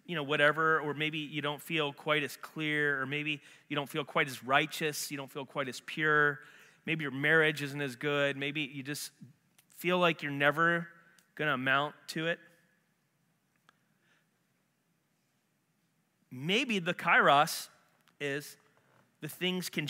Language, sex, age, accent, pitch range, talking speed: English, male, 30-49, American, 145-170 Hz, 150 wpm